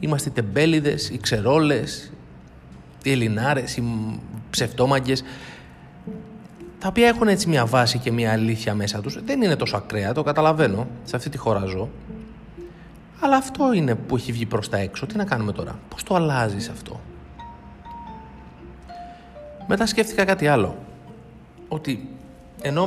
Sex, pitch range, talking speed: male, 105-160 Hz, 140 wpm